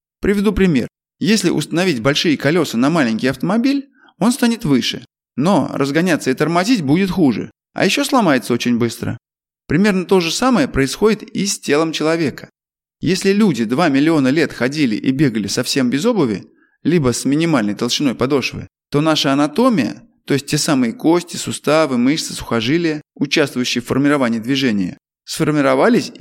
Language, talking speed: Russian, 145 wpm